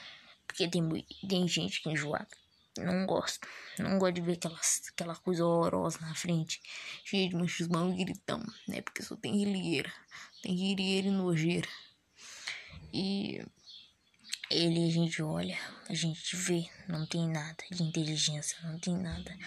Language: Arabic